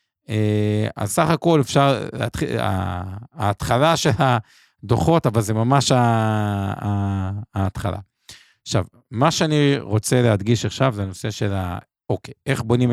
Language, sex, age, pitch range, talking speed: Hebrew, male, 50-69, 100-125 Hz, 120 wpm